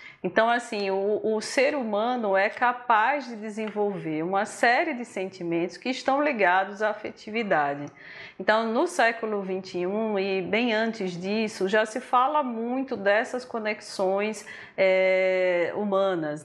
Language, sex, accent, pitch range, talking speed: Portuguese, female, Brazilian, 190-245 Hz, 130 wpm